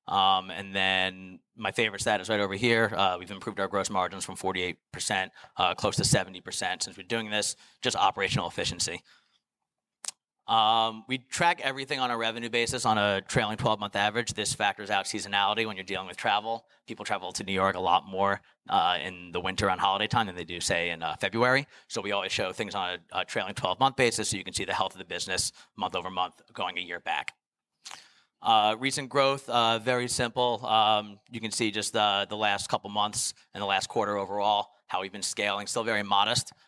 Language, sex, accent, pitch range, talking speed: English, male, American, 95-115 Hz, 215 wpm